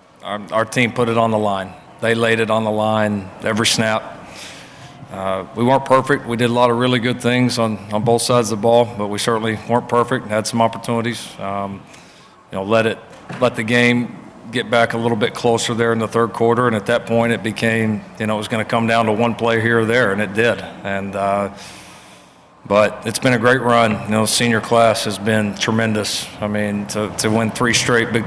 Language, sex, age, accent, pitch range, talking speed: English, male, 40-59, American, 105-115 Hz, 225 wpm